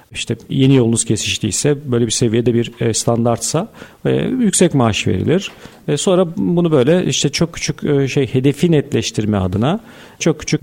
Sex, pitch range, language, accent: male, 115-155 Hz, Turkish, native